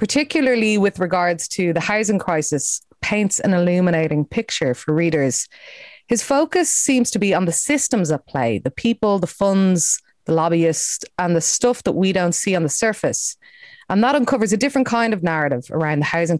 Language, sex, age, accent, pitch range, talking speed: English, female, 20-39, Irish, 155-210 Hz, 185 wpm